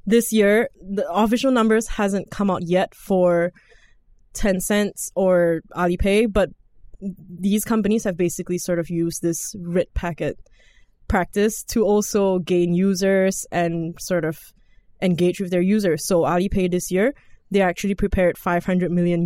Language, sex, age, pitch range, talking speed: English, female, 10-29, 170-195 Hz, 140 wpm